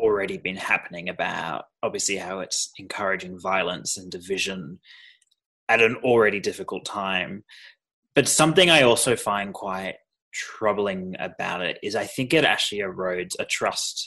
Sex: male